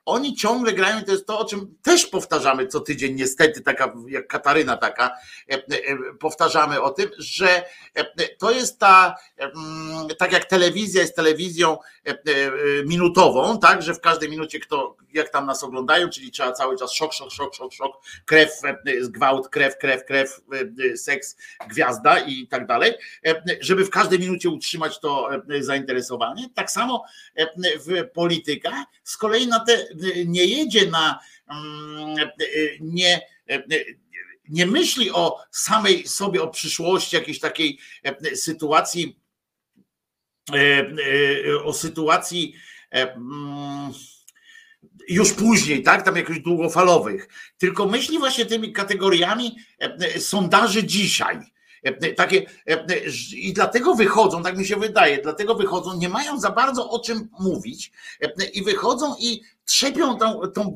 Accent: native